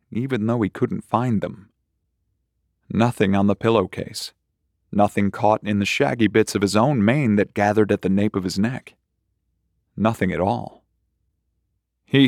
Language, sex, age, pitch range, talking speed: English, male, 30-49, 100-125 Hz, 155 wpm